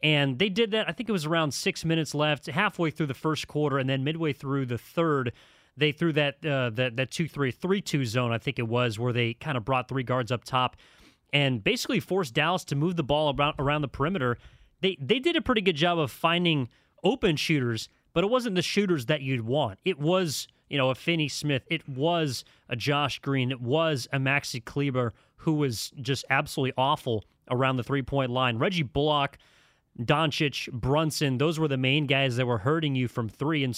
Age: 30-49